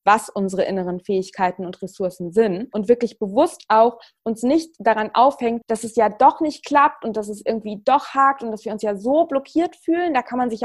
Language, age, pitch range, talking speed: German, 20-39, 205-250 Hz, 220 wpm